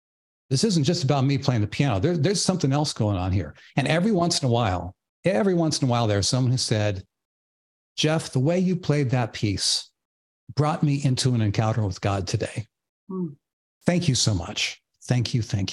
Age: 60-79